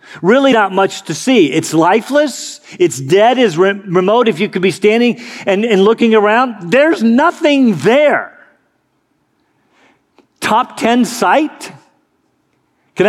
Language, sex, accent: English, male, American